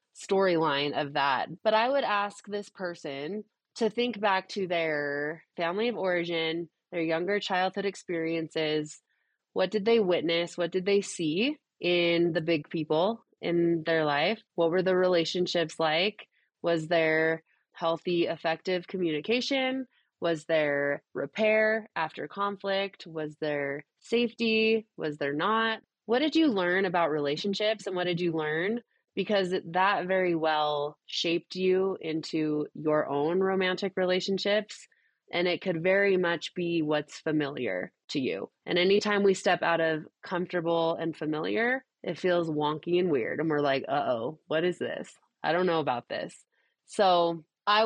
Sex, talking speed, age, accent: female, 150 wpm, 20-39, American